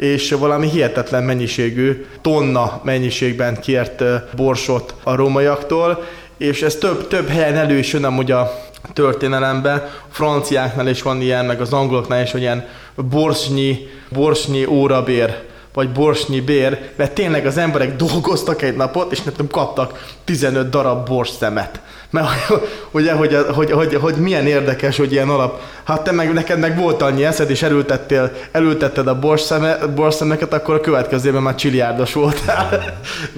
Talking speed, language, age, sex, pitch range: 145 wpm, Hungarian, 20-39, male, 125-150 Hz